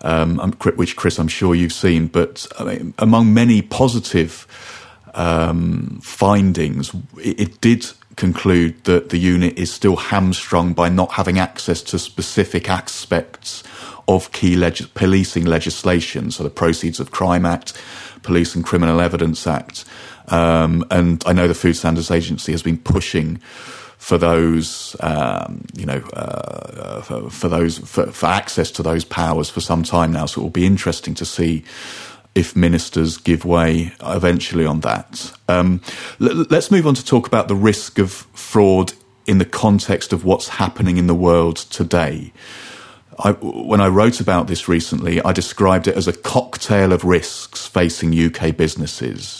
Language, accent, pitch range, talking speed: English, British, 85-95 Hz, 160 wpm